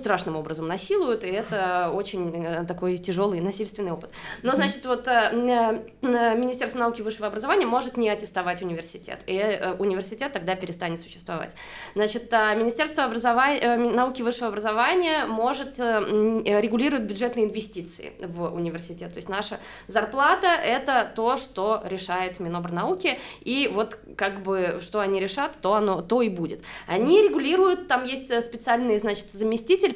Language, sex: Russian, female